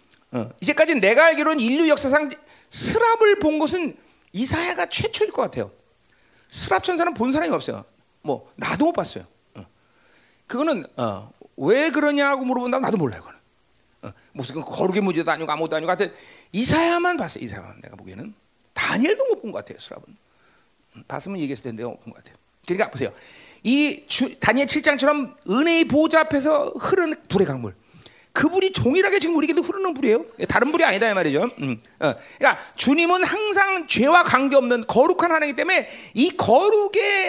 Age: 40-59